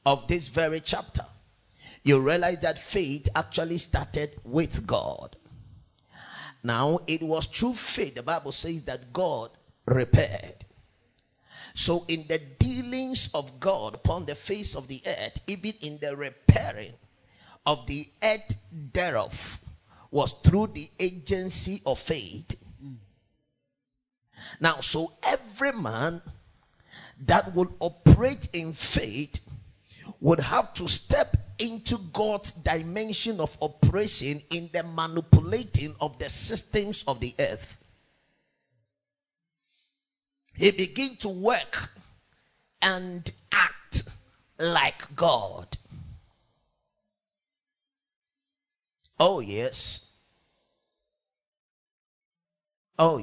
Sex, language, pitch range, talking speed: male, English, 130-200 Hz, 100 wpm